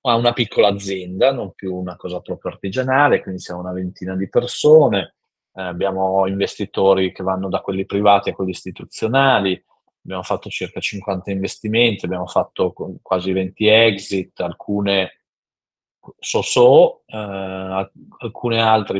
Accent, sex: native, male